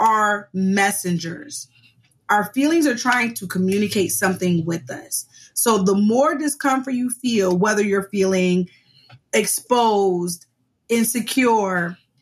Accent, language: American, English